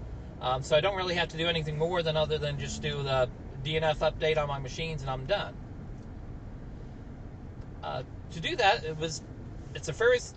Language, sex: English, male